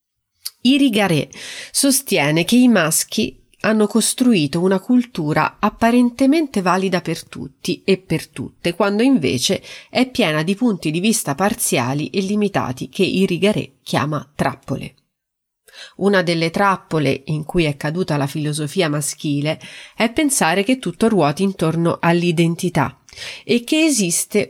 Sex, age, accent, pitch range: female, 30-49, native, 155-210 Hz